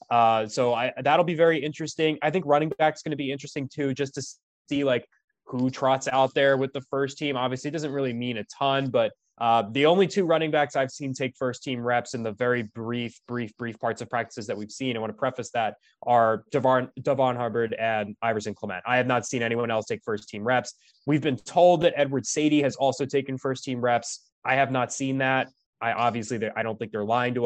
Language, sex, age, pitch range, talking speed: English, male, 20-39, 115-140 Hz, 235 wpm